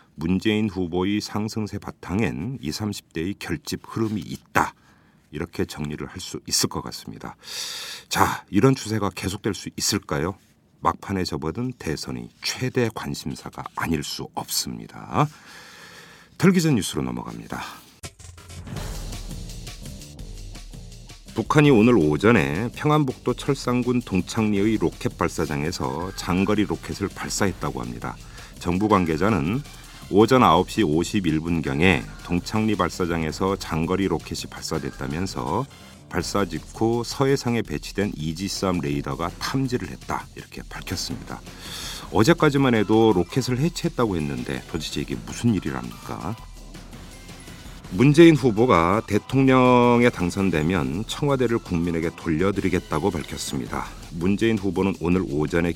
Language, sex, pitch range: Korean, male, 80-110 Hz